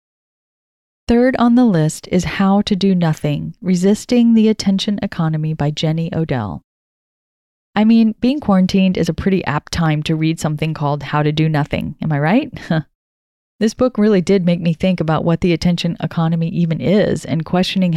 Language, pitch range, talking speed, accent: English, 160-200 Hz, 175 wpm, American